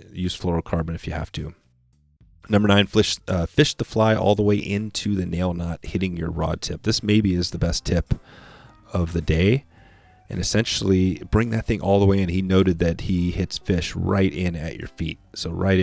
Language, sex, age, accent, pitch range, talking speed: English, male, 30-49, American, 85-110 Hz, 210 wpm